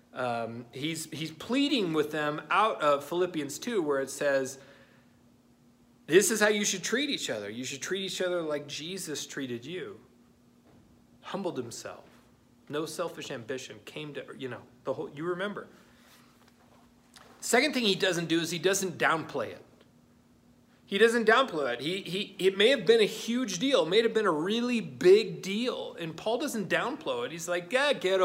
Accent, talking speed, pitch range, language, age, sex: American, 175 wpm, 130-205 Hz, English, 30-49, male